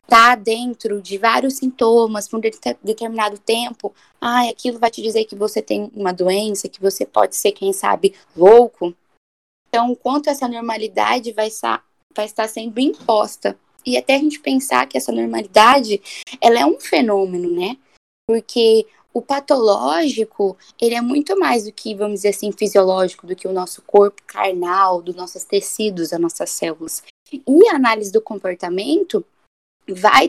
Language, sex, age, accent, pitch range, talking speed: Portuguese, female, 10-29, Brazilian, 205-270 Hz, 160 wpm